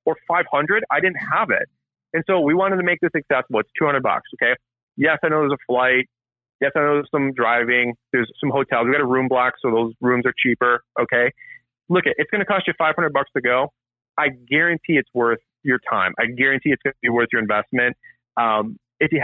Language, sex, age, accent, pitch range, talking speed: English, male, 30-49, American, 120-155 Hz, 225 wpm